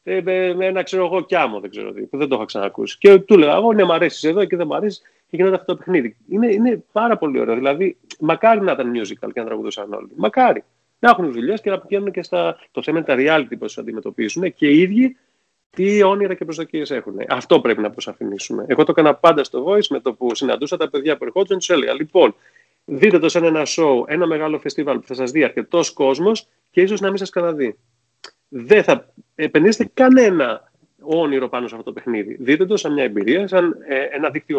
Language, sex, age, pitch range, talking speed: Greek, male, 30-49, 135-190 Hz, 215 wpm